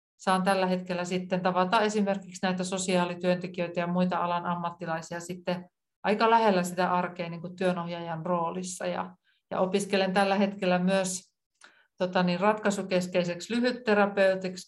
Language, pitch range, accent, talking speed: Finnish, 175-200 Hz, native, 120 wpm